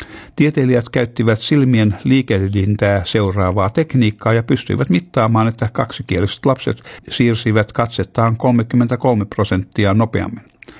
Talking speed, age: 95 wpm, 60-79